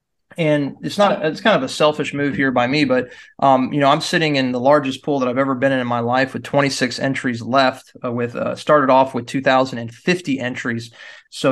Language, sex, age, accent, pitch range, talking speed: English, male, 20-39, American, 130-150 Hz, 225 wpm